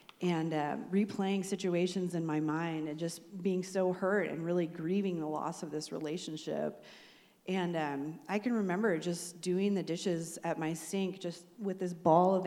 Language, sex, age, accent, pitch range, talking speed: English, female, 40-59, American, 165-195 Hz, 180 wpm